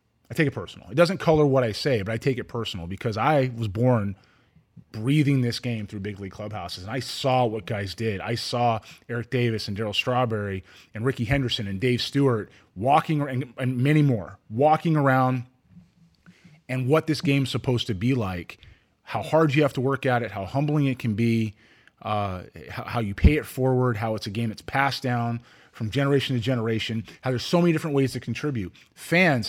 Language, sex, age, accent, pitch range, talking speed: English, male, 30-49, American, 115-145 Hz, 200 wpm